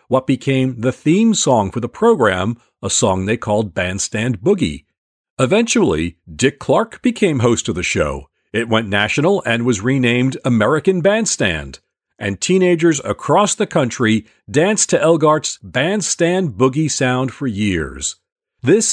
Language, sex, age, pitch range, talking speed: English, male, 40-59, 110-145 Hz, 140 wpm